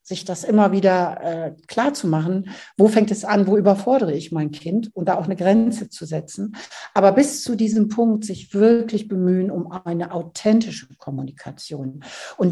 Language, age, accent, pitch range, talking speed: German, 60-79, German, 180-225 Hz, 180 wpm